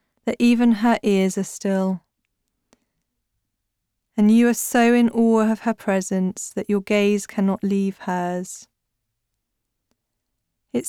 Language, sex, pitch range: English, female, 190-225 Hz